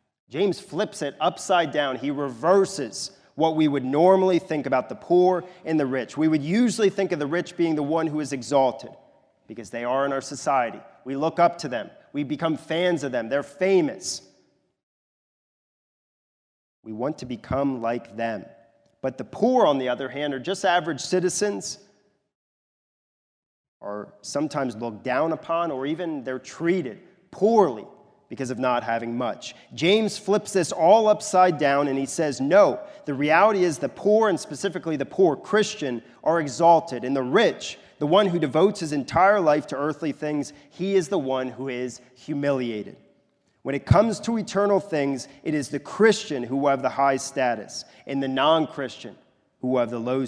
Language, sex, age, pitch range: English, male, 30-49, 130-175 Hz